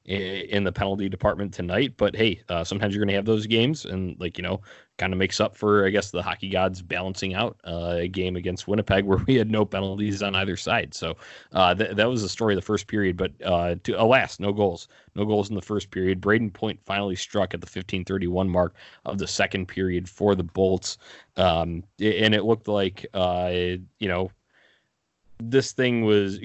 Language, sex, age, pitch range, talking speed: English, male, 20-39, 90-105 Hz, 205 wpm